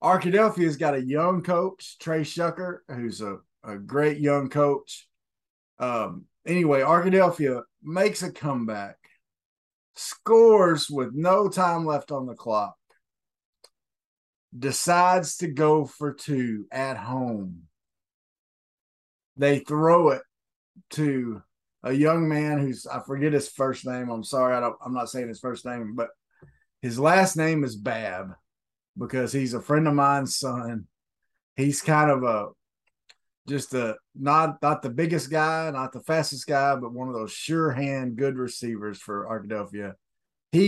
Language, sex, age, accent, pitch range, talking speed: English, male, 30-49, American, 115-155 Hz, 140 wpm